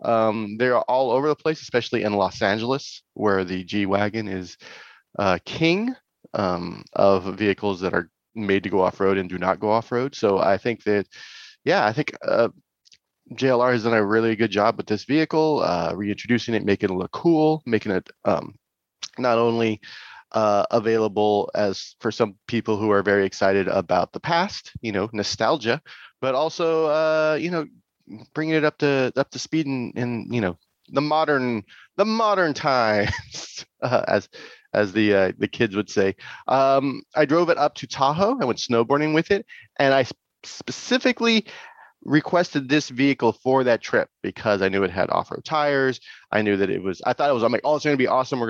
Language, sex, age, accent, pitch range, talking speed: English, male, 30-49, American, 105-150 Hz, 190 wpm